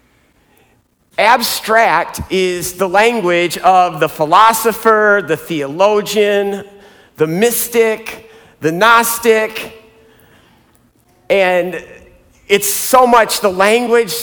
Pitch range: 180-225 Hz